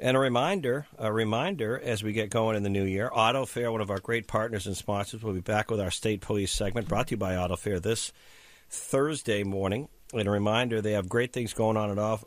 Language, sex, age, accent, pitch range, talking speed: English, male, 50-69, American, 100-120 Hz, 245 wpm